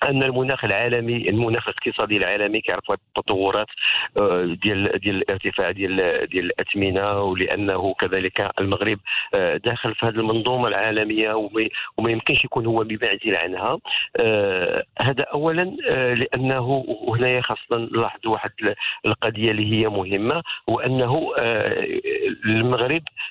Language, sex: English, male